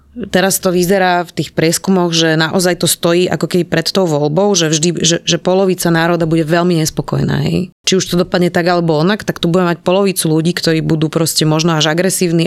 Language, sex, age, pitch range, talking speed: Slovak, female, 20-39, 165-190 Hz, 210 wpm